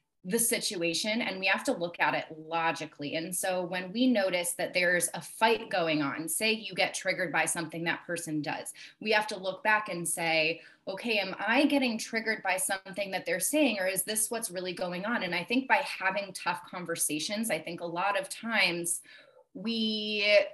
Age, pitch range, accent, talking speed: 30-49, 170-225 Hz, American, 200 wpm